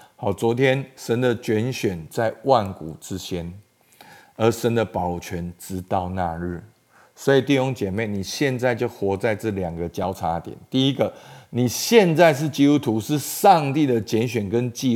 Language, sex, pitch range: Chinese, male, 100-145 Hz